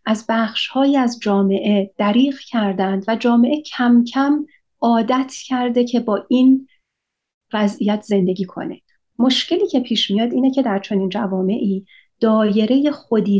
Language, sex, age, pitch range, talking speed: Persian, female, 40-59, 200-255 Hz, 130 wpm